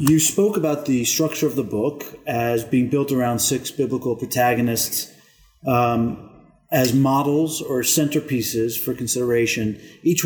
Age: 40-59